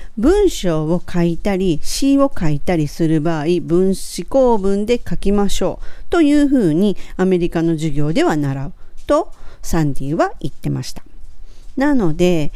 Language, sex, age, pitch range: Japanese, female, 40-59, 160-205 Hz